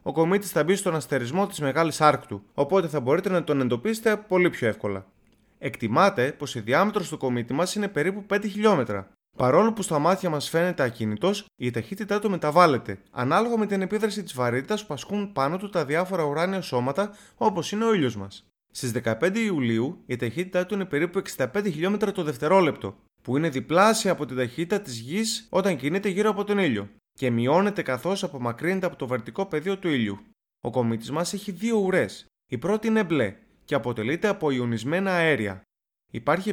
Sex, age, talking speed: male, 20-39, 180 wpm